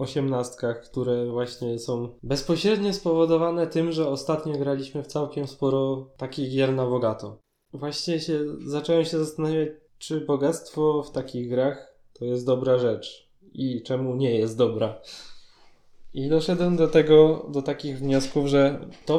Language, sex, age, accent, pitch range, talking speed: Polish, male, 20-39, native, 125-150 Hz, 135 wpm